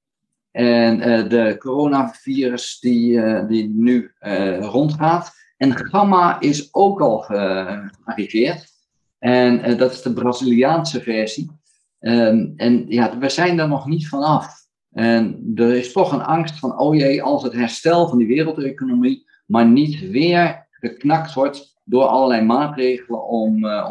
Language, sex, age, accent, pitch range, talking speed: Dutch, male, 50-69, Dutch, 115-150 Hz, 145 wpm